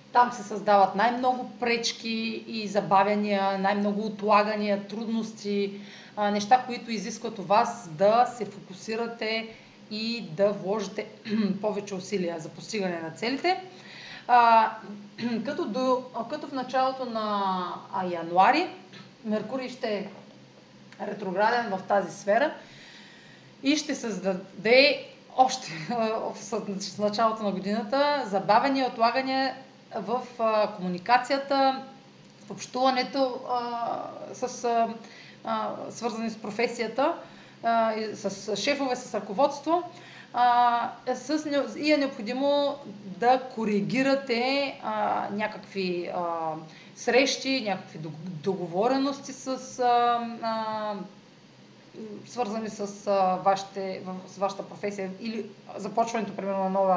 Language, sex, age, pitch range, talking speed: Bulgarian, female, 30-49, 200-250 Hz, 100 wpm